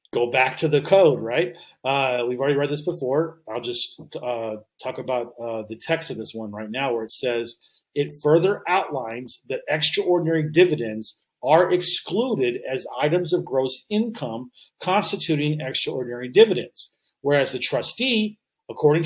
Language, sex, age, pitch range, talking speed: English, male, 40-59, 130-170 Hz, 150 wpm